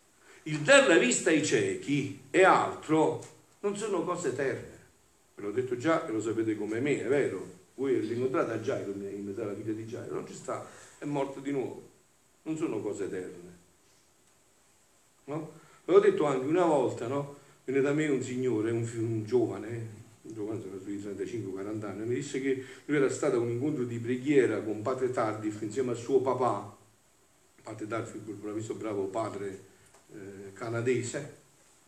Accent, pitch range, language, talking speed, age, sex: native, 115-170 Hz, Italian, 175 wpm, 50-69, male